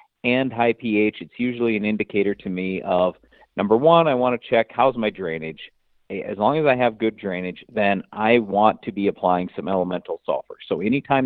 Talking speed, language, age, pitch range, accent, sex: 195 wpm, English, 50-69, 90-120 Hz, American, male